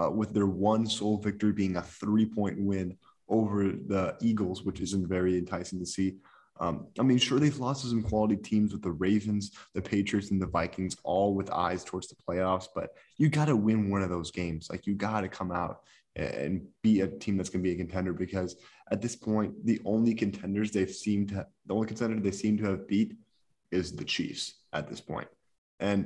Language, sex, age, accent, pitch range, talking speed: English, male, 20-39, American, 95-110 Hz, 215 wpm